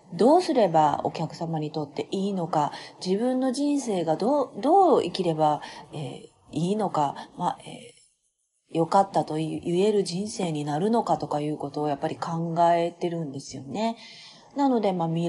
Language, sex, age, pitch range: Japanese, female, 40-59, 165-245 Hz